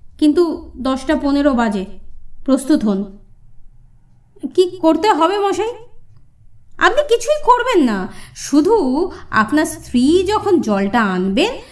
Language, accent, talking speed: Bengali, native, 100 wpm